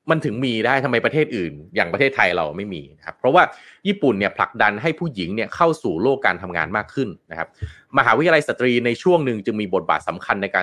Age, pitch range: 20-39, 115-145 Hz